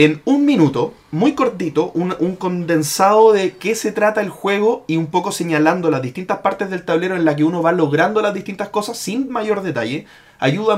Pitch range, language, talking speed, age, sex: 160-205 Hz, Spanish, 200 wpm, 30-49, male